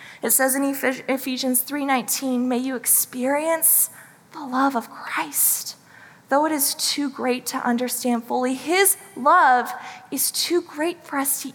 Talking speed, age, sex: 145 wpm, 20-39, female